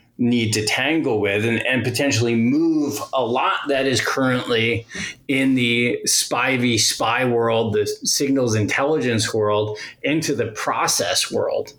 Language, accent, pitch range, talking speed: English, American, 105-125 Hz, 135 wpm